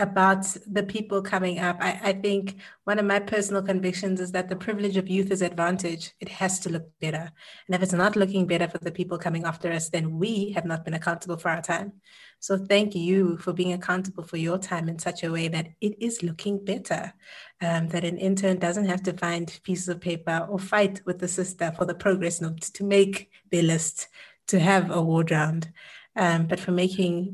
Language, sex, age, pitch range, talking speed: English, female, 30-49, 170-195 Hz, 215 wpm